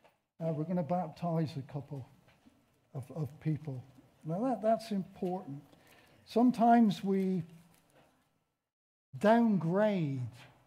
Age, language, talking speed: 60-79, English, 95 wpm